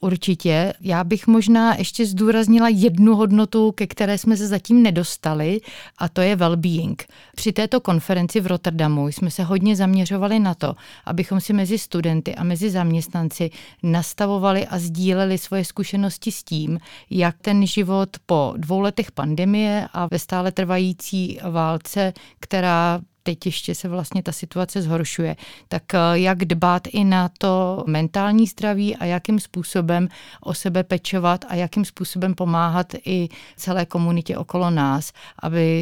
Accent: native